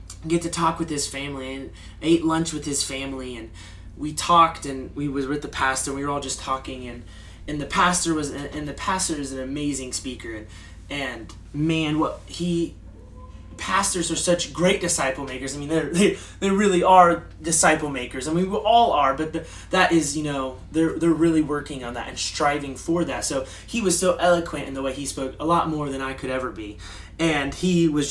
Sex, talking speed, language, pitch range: male, 215 wpm, English, 130-170 Hz